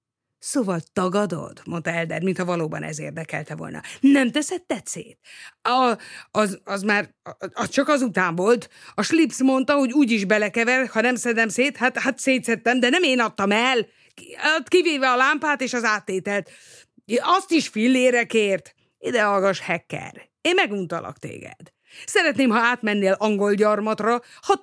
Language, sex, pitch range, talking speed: Hungarian, female, 190-270 Hz, 145 wpm